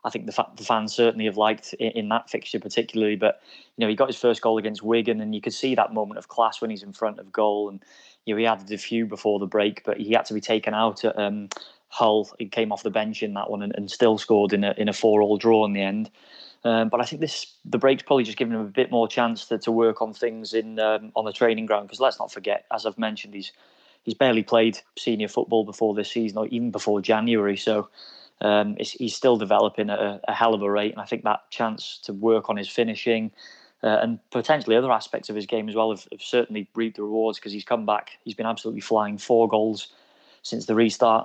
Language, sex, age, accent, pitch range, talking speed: English, male, 20-39, British, 105-115 Hz, 255 wpm